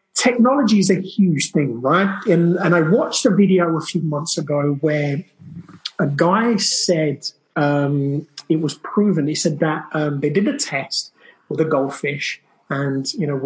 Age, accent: 30-49, British